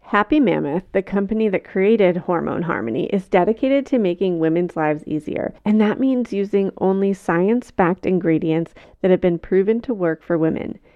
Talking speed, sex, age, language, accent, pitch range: 170 wpm, female, 30-49, English, American, 175-215 Hz